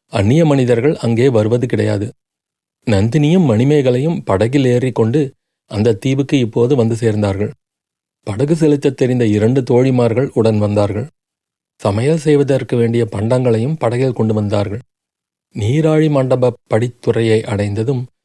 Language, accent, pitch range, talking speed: Tamil, native, 110-145 Hz, 110 wpm